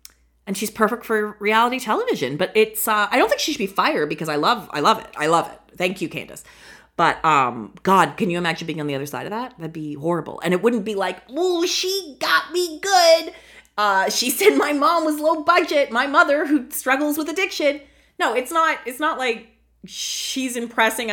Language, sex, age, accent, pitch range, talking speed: English, female, 30-49, American, 170-275 Hz, 215 wpm